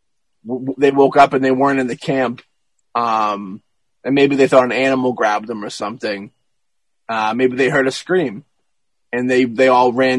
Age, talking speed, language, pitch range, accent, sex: 30-49, 185 wpm, English, 125-140 Hz, American, male